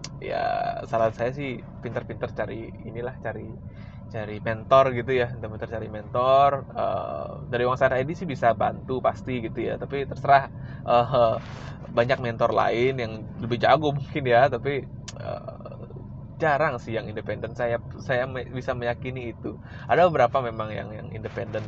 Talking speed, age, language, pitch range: 145 wpm, 20-39, Indonesian, 110-130 Hz